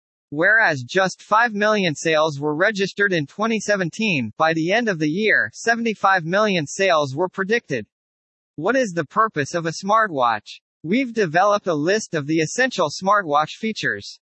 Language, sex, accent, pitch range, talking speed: English, male, American, 155-215 Hz, 150 wpm